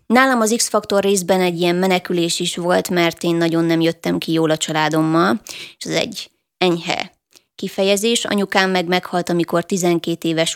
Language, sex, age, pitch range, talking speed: Hungarian, female, 20-39, 175-200 Hz, 165 wpm